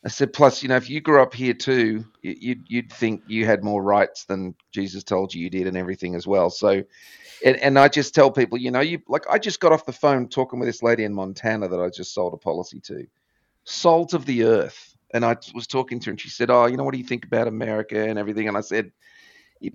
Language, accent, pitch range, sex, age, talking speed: English, Australian, 95-130 Hz, male, 40-59, 260 wpm